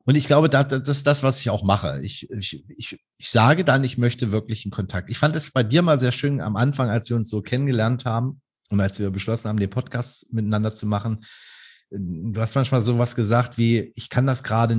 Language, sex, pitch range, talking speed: German, male, 105-135 Hz, 225 wpm